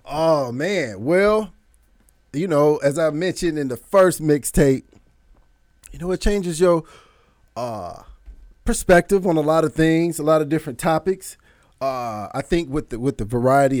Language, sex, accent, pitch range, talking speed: English, male, American, 120-165 Hz, 160 wpm